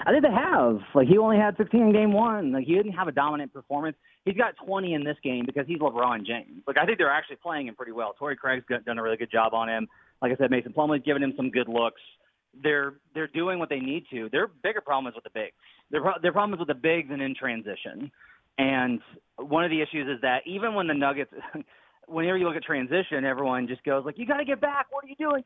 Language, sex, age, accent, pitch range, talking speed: English, male, 30-49, American, 135-170 Hz, 260 wpm